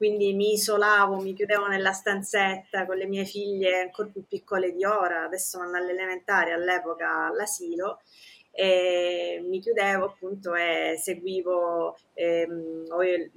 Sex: female